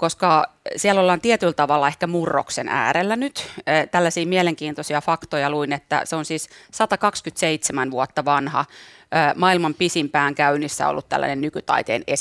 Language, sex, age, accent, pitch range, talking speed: Finnish, female, 30-49, native, 150-195 Hz, 130 wpm